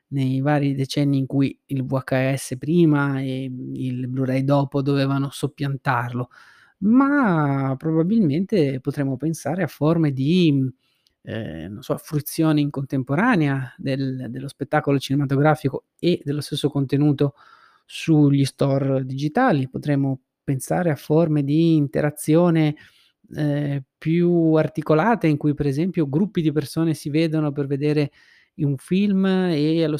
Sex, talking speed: male, 125 wpm